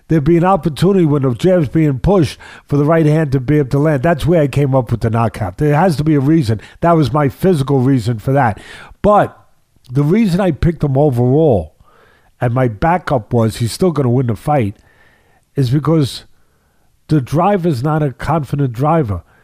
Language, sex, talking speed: English, male, 200 wpm